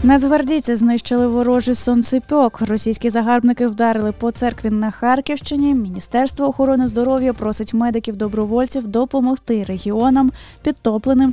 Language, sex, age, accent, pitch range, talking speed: Ukrainian, female, 20-39, native, 215-260 Hz, 100 wpm